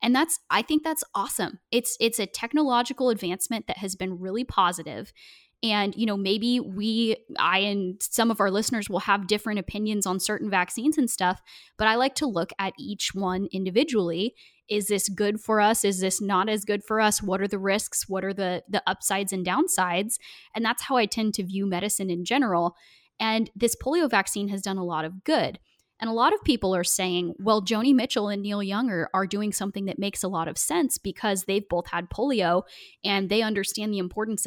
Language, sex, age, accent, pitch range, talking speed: English, female, 10-29, American, 185-230 Hz, 210 wpm